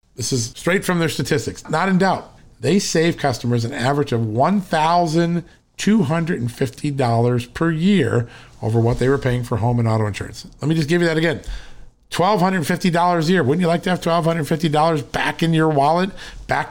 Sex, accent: male, American